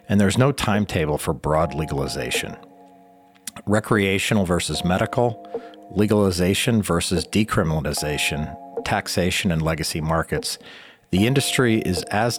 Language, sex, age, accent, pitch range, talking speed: English, male, 40-59, American, 80-110 Hz, 100 wpm